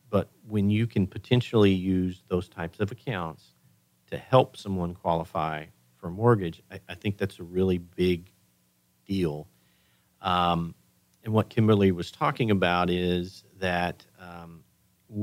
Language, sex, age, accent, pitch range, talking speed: English, male, 40-59, American, 85-100 Hz, 140 wpm